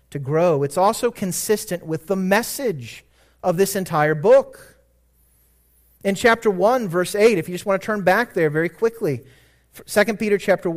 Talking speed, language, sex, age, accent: 165 wpm, English, male, 30-49, American